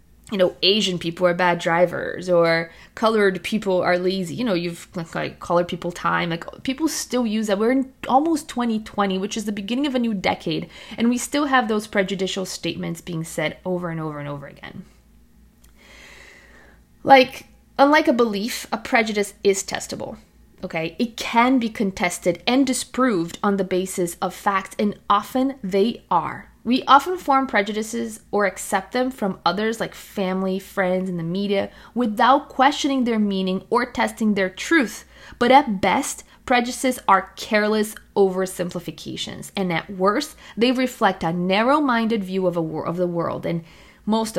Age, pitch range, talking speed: 20-39, 175-230 Hz, 160 wpm